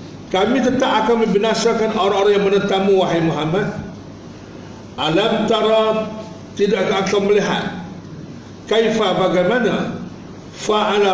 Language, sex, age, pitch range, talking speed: Malay, male, 60-79, 160-215 Hz, 90 wpm